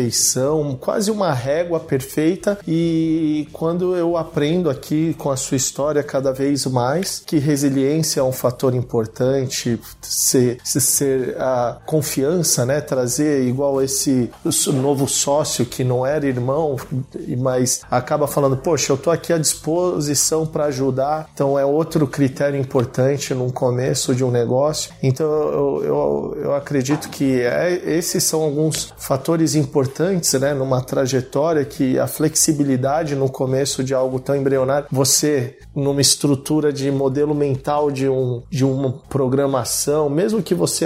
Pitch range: 135-160 Hz